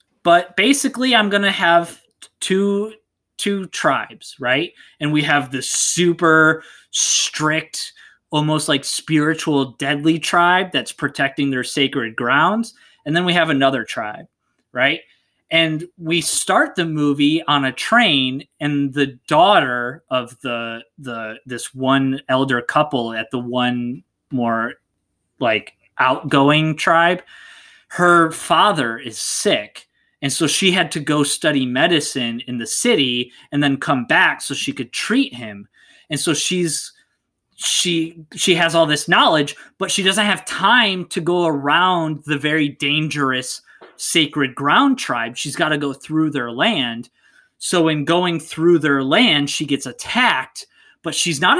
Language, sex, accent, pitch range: English, male, American, 135-175 Hz